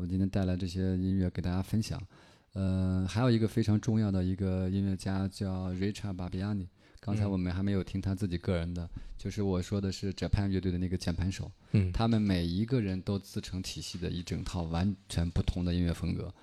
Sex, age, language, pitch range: male, 20-39, Chinese, 95-110 Hz